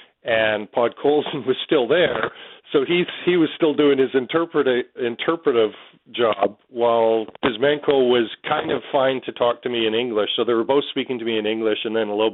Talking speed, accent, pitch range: 200 wpm, American, 105-140 Hz